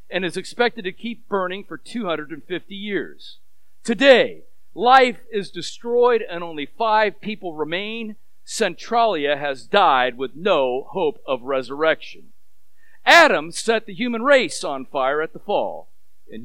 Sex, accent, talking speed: male, American, 135 wpm